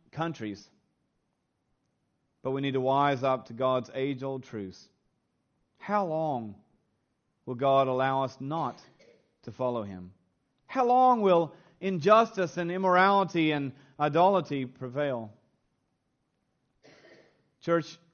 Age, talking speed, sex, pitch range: 40-59, 105 wpm, male, 130-175 Hz